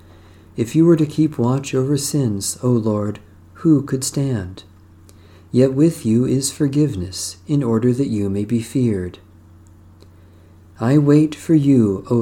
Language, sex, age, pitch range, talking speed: English, male, 50-69, 90-135 Hz, 145 wpm